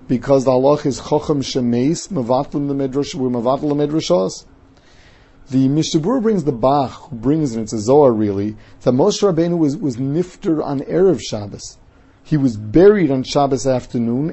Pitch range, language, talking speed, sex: 125-155 Hz, English, 155 wpm, male